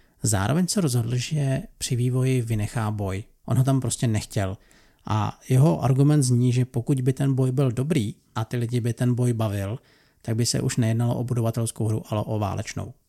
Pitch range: 115-135 Hz